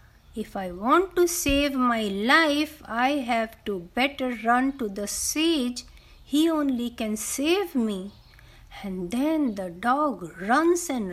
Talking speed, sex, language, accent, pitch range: 140 wpm, female, Hindi, native, 195-305 Hz